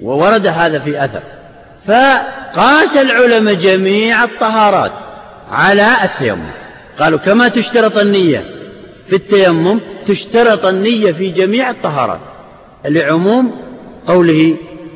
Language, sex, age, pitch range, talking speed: Arabic, male, 50-69, 165-245 Hz, 90 wpm